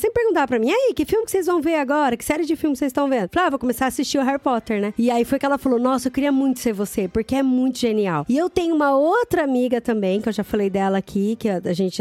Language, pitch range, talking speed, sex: Portuguese, 225-320 Hz, 305 wpm, female